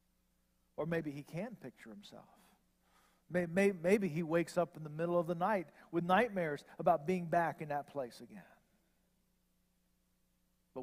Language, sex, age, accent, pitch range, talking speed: English, male, 50-69, American, 120-180 Hz, 145 wpm